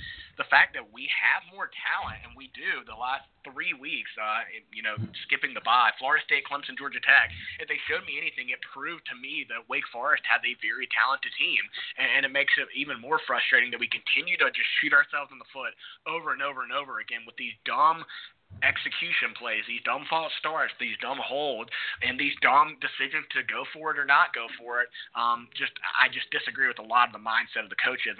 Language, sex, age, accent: English, male, 30-49, American